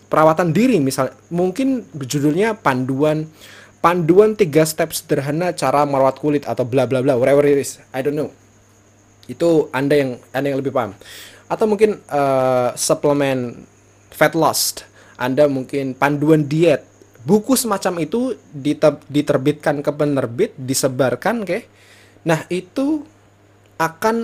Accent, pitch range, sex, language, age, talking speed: native, 125-170 Hz, male, Indonesian, 20-39, 130 wpm